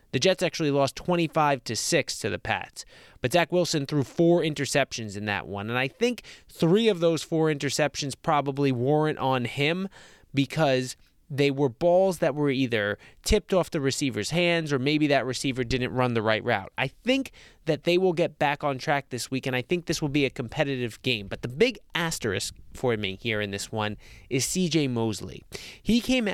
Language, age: English, 20-39